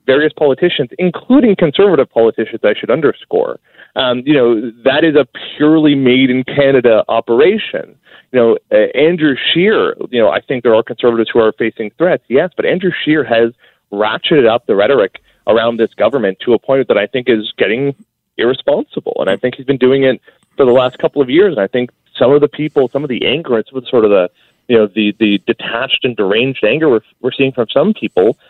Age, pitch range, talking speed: 30-49, 120-175 Hz, 205 wpm